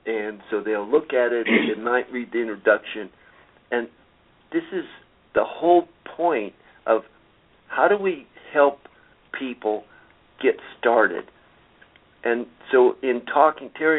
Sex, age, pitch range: male, 50-69, 110-130 Hz